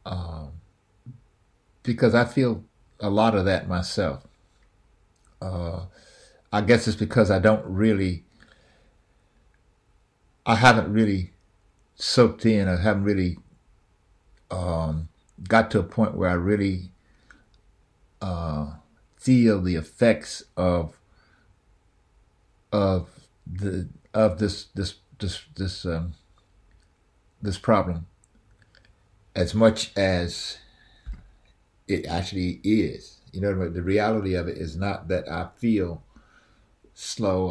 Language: English